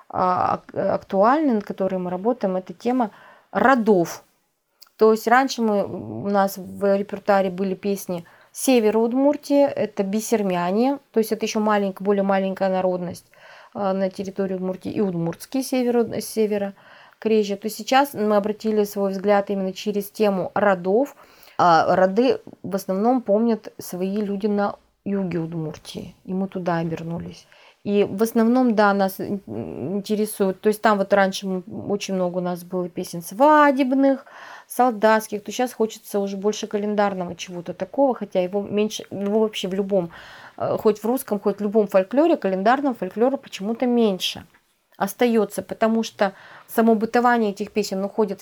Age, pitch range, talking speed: 30-49, 195-225 Hz, 145 wpm